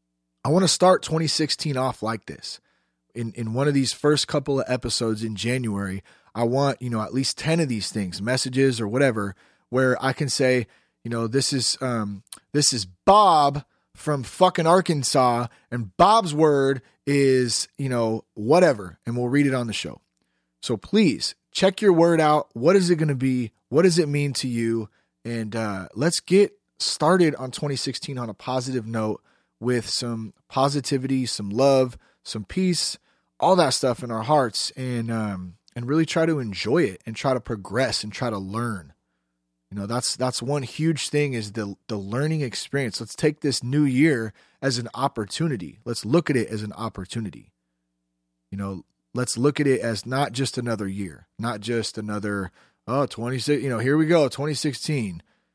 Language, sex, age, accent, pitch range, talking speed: English, male, 30-49, American, 110-145 Hz, 180 wpm